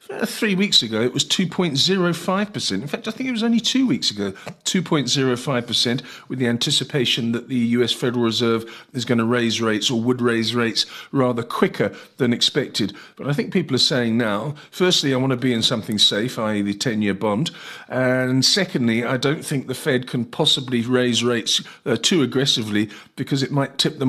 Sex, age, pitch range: male, 40-59, 110-135 Hz